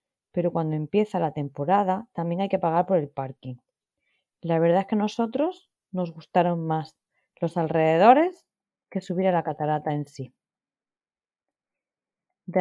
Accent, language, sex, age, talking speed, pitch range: Spanish, Spanish, female, 30-49, 150 wpm, 170-215 Hz